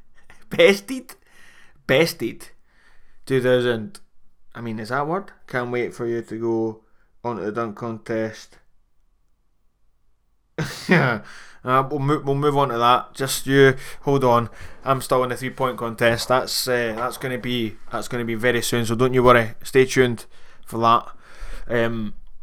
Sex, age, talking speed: male, 20-39, 160 wpm